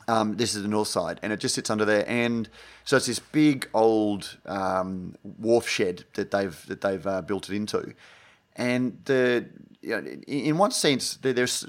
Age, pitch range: 30-49, 95-115 Hz